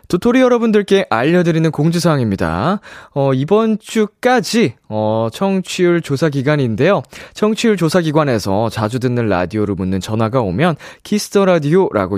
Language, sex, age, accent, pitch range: Korean, male, 20-39, native, 110-180 Hz